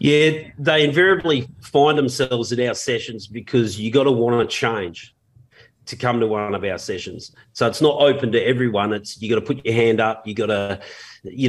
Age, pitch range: 30-49, 110-130 Hz